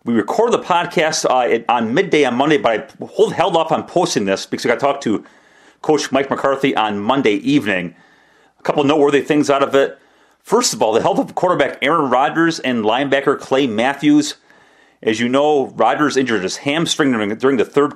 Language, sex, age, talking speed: English, male, 40-59, 200 wpm